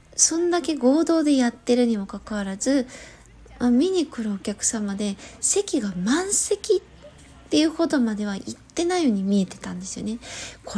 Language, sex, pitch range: Japanese, female, 205-285 Hz